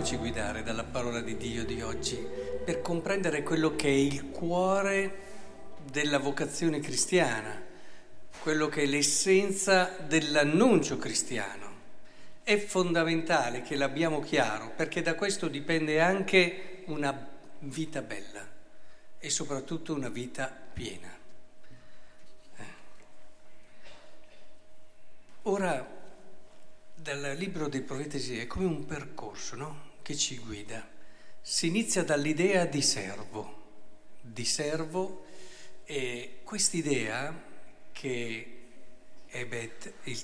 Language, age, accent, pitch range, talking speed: Italian, 50-69, native, 125-175 Hz, 100 wpm